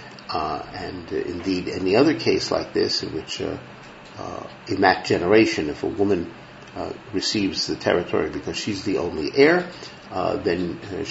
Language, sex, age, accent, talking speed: English, male, 50-69, American, 175 wpm